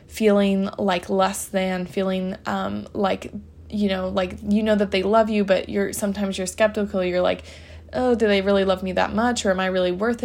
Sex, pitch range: female, 185-210 Hz